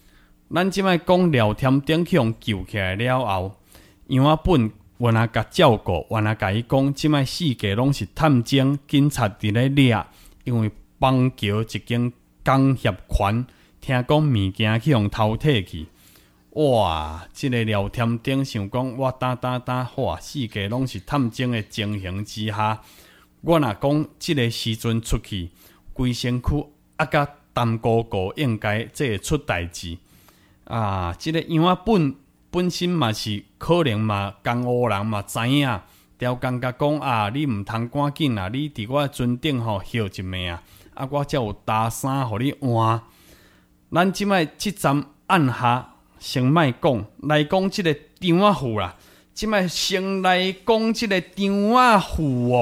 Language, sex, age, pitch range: Chinese, male, 20-39, 105-145 Hz